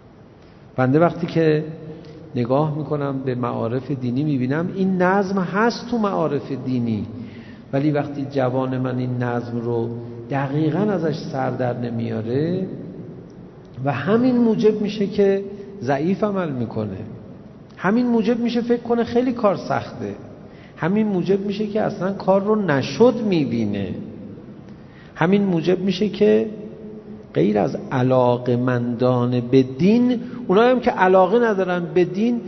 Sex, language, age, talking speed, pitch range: male, Persian, 50-69, 125 wpm, 130-200 Hz